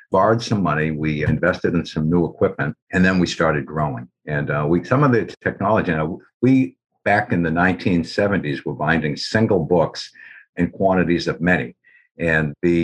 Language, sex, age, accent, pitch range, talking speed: English, male, 60-79, American, 80-90 Hz, 180 wpm